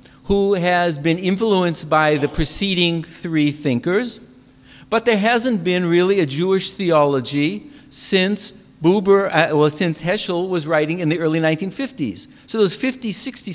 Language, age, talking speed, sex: English, 50-69, 140 wpm, male